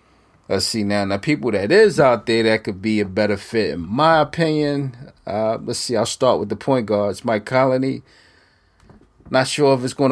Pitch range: 100-125 Hz